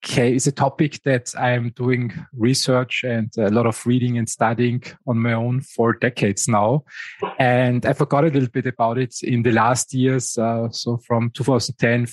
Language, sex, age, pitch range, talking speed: English, male, 20-39, 115-125 Hz, 185 wpm